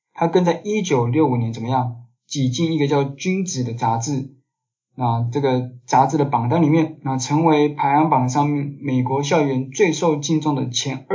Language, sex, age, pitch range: Chinese, male, 20-39, 125-155 Hz